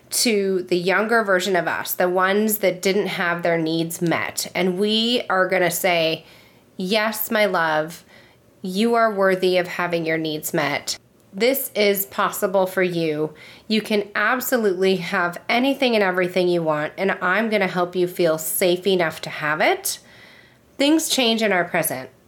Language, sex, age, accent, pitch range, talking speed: English, female, 30-49, American, 175-215 Hz, 165 wpm